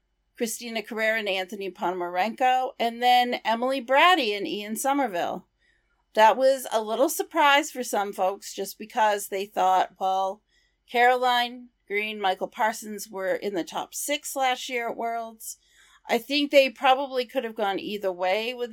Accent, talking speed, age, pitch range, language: American, 155 wpm, 40-59, 185-250 Hz, English